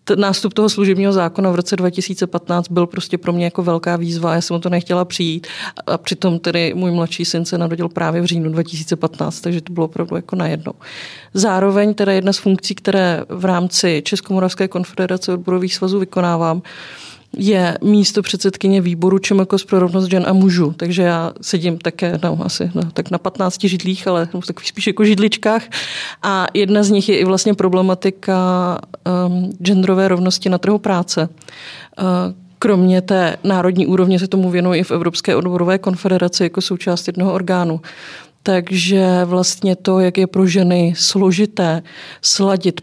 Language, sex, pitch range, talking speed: Czech, female, 180-195 Hz, 165 wpm